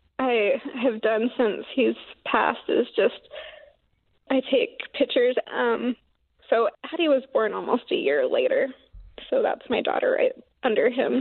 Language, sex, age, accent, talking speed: English, female, 20-39, American, 145 wpm